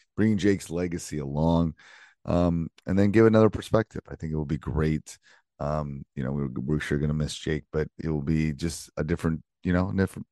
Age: 30-49